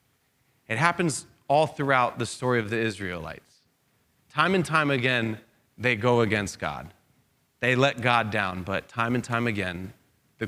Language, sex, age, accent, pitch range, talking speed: English, male, 30-49, American, 110-135 Hz, 155 wpm